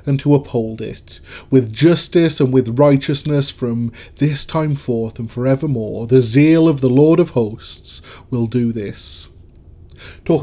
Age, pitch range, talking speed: 30-49, 115-150 Hz, 150 wpm